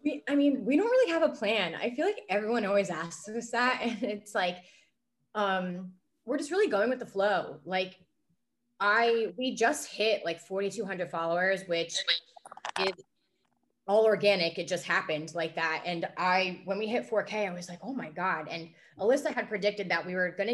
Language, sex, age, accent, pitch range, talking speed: English, female, 20-39, American, 170-215 Hz, 190 wpm